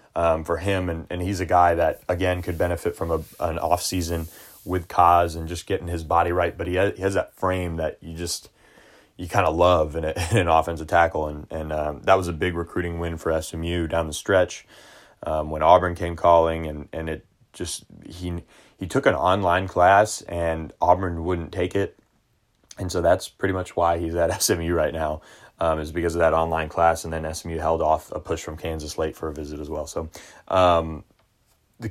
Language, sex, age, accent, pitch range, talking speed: English, male, 20-39, American, 80-90 Hz, 210 wpm